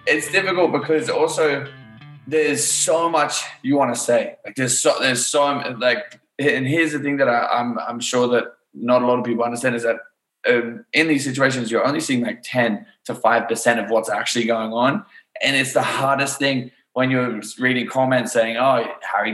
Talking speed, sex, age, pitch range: 195 wpm, male, 20-39, 115-150 Hz